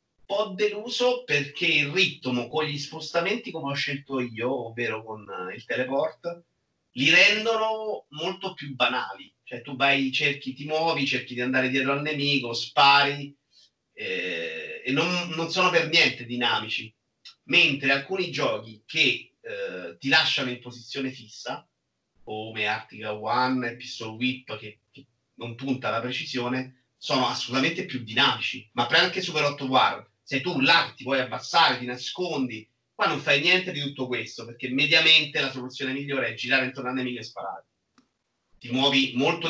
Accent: native